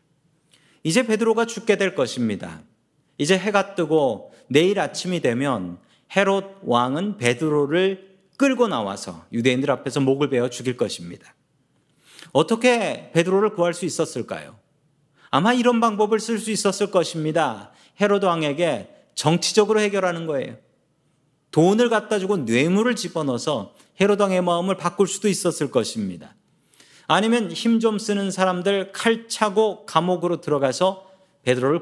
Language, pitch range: Korean, 155-215 Hz